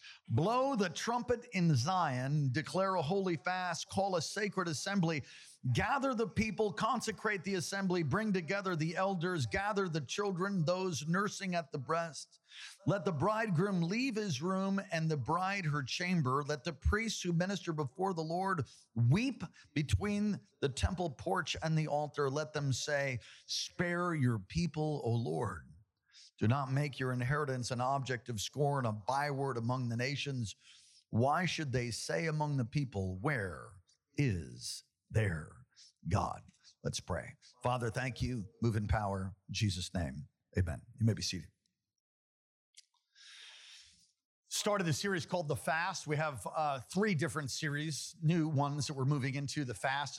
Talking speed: 150 wpm